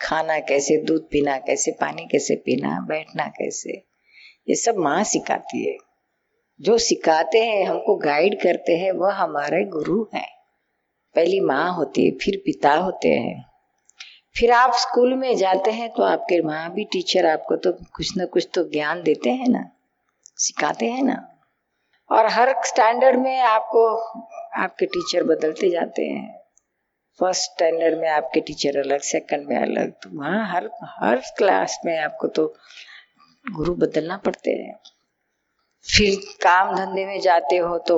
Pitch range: 160-235 Hz